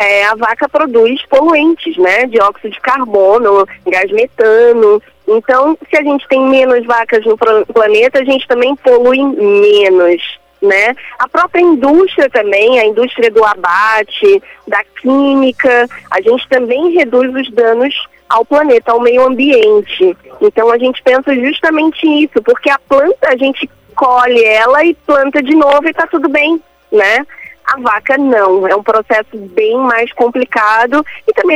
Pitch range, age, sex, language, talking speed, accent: 230-310 Hz, 20-39, female, Portuguese, 155 wpm, Brazilian